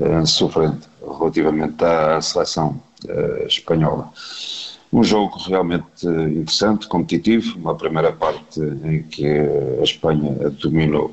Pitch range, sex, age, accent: 75-85 Hz, male, 50-69, Portuguese